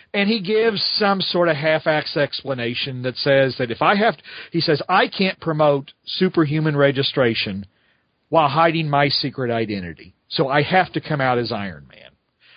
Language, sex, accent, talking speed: English, male, American, 170 wpm